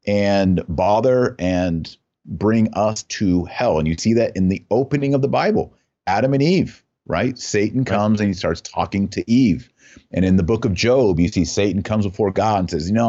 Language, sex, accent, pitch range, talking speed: English, male, American, 90-120 Hz, 205 wpm